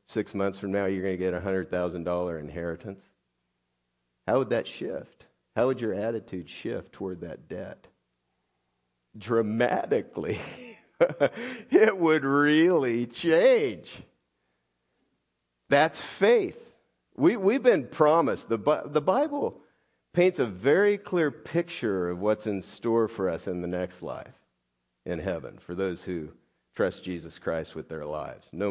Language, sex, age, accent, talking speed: English, male, 50-69, American, 135 wpm